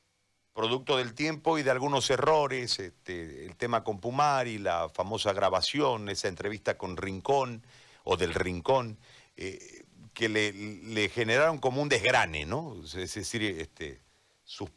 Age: 50-69